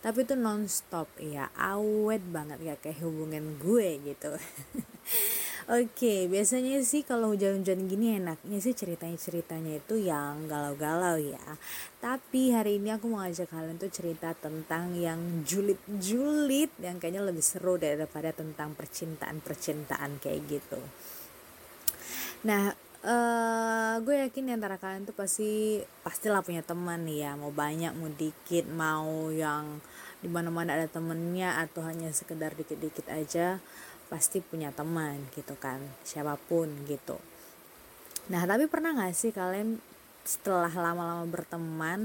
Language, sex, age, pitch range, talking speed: Indonesian, female, 20-39, 155-215 Hz, 125 wpm